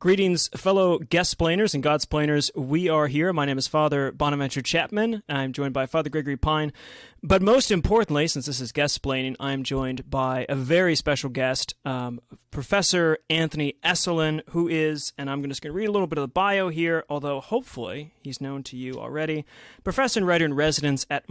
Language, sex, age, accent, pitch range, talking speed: English, male, 30-49, American, 140-180 Hz, 180 wpm